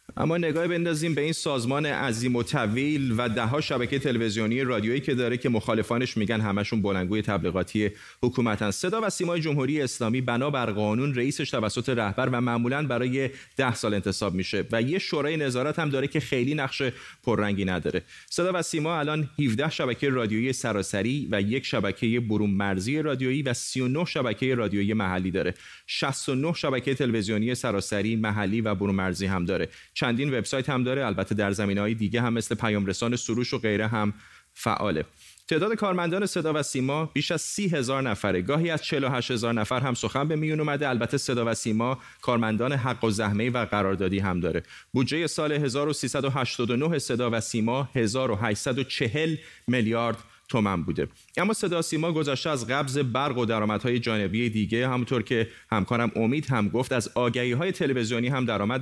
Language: Persian